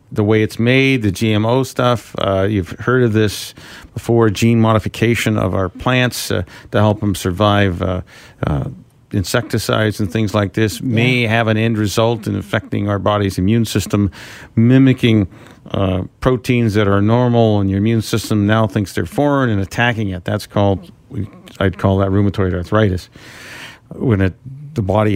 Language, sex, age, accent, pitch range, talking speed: English, male, 50-69, American, 100-120 Hz, 160 wpm